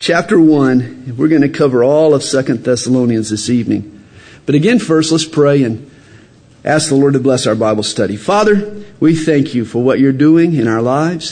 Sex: male